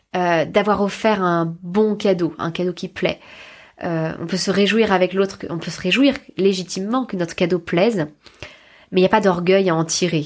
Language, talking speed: French, 210 wpm